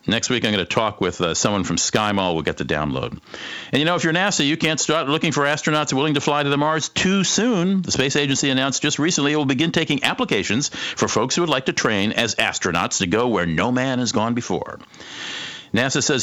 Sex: male